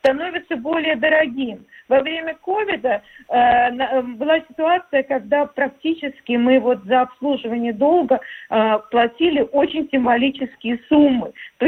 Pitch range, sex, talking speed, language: 235-300 Hz, female, 115 wpm, Russian